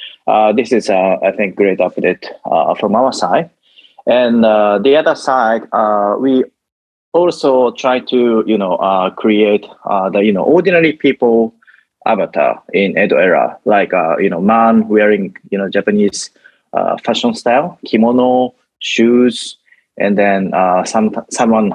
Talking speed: 150 wpm